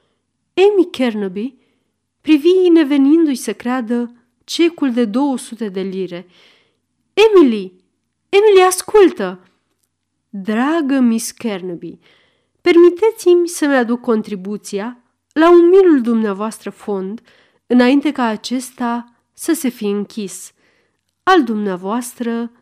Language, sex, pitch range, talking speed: Romanian, female, 195-285 Hz, 95 wpm